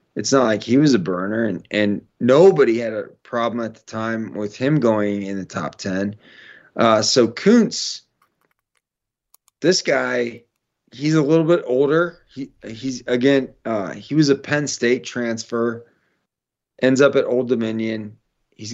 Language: English